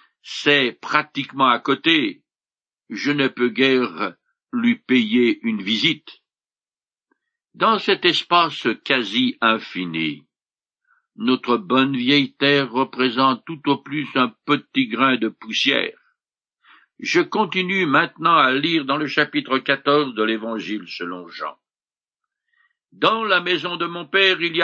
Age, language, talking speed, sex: 60-79, French, 125 wpm, male